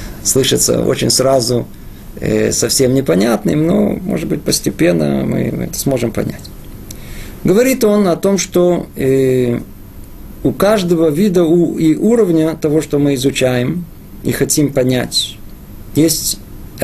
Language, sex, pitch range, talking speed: Russian, male, 120-165 Hz, 110 wpm